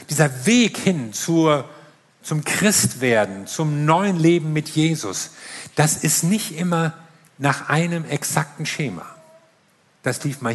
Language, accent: German, German